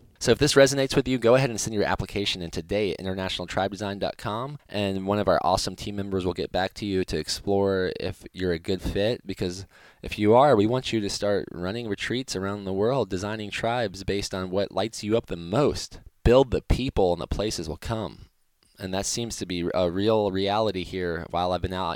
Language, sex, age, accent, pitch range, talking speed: English, male, 20-39, American, 90-105 Hz, 220 wpm